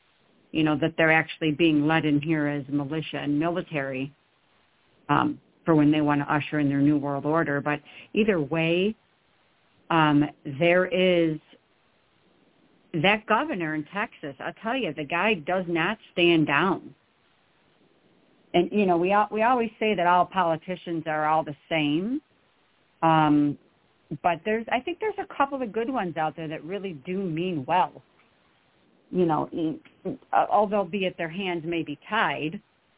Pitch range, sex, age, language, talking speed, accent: 150-190 Hz, female, 50-69, English, 160 wpm, American